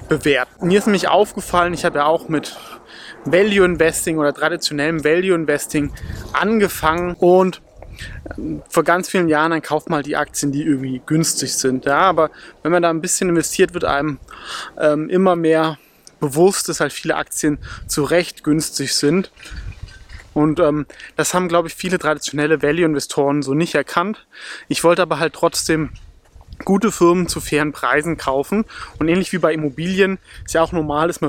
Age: 20-39